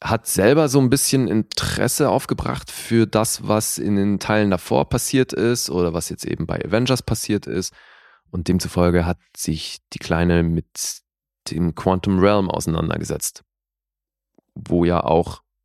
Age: 20-39